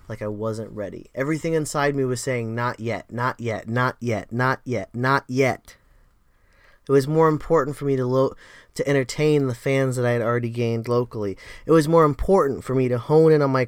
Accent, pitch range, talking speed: American, 115-150 Hz, 210 wpm